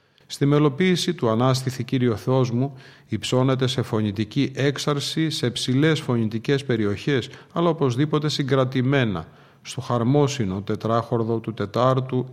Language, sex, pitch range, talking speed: Greek, male, 120-145 Hz, 110 wpm